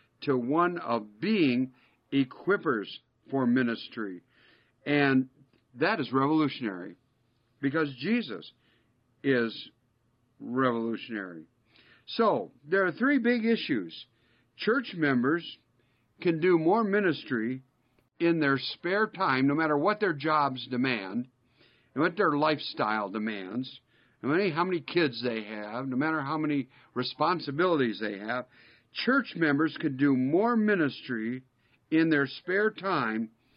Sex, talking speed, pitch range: male, 120 wpm, 120-160 Hz